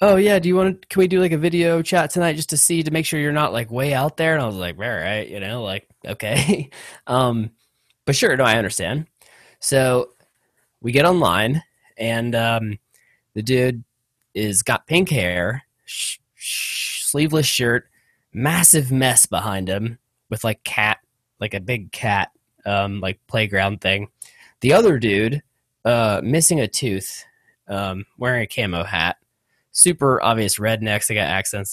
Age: 20-39